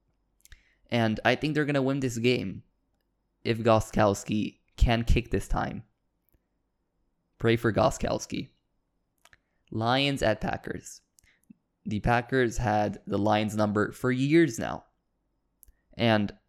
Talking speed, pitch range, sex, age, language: 115 wpm, 105-120 Hz, male, 20-39, English